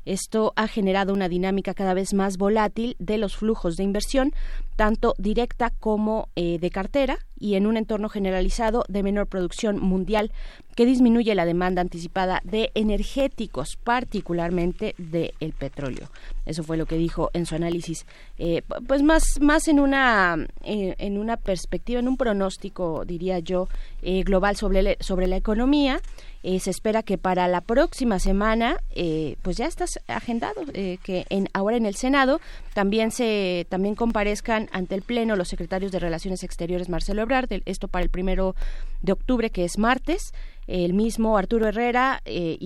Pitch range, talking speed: 180-225 Hz, 165 wpm